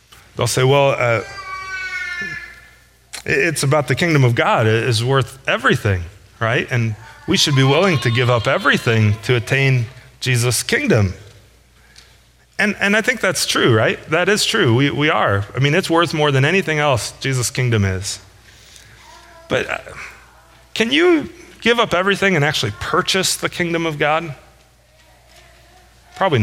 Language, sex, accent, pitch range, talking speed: English, male, American, 105-150 Hz, 150 wpm